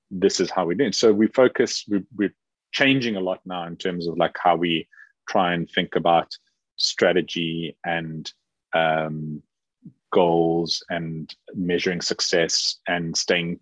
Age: 30-49